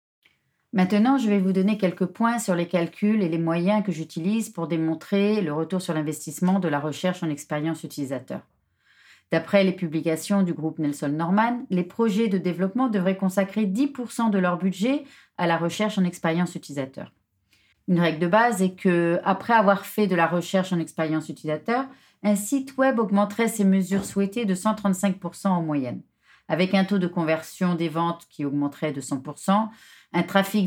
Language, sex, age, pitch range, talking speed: French, female, 30-49, 160-205 Hz, 175 wpm